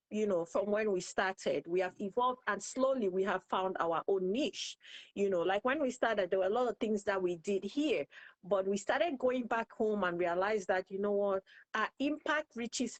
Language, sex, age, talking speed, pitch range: English, female, 40-59, 220 wpm, 195-235 Hz